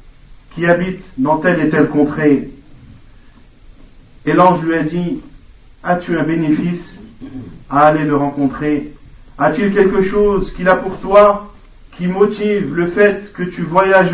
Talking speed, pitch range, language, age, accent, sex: 150 wpm, 150-185 Hz, French, 50-69, French, male